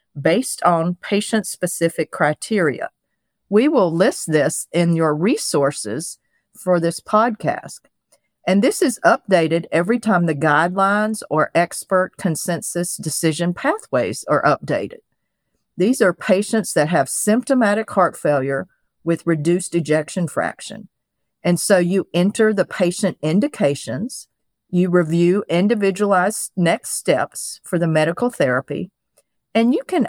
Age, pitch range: 50-69, 155-205 Hz